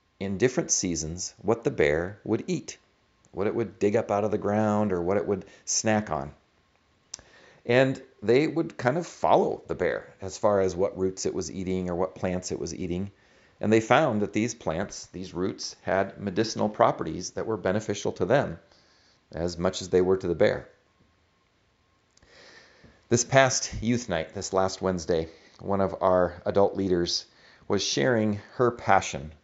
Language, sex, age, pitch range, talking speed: English, male, 40-59, 90-105 Hz, 175 wpm